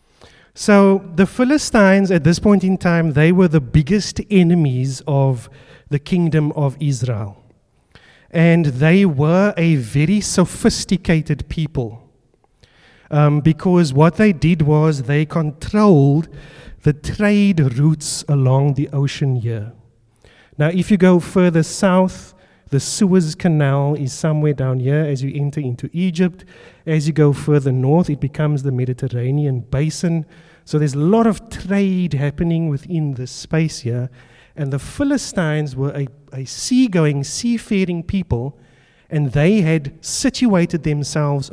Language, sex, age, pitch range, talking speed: English, male, 30-49, 135-180 Hz, 135 wpm